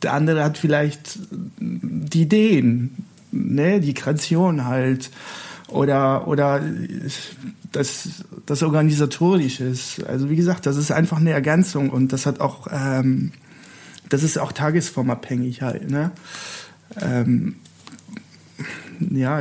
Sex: male